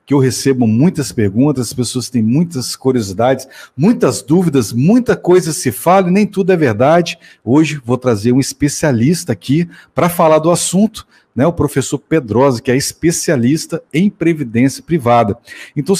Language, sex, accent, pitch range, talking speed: Portuguese, male, Brazilian, 130-165 Hz, 155 wpm